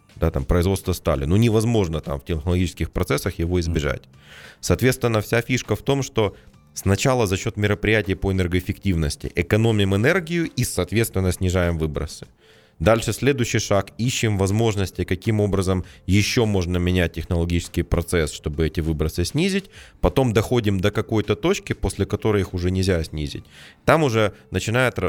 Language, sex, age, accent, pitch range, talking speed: Russian, male, 30-49, native, 85-110 Hz, 145 wpm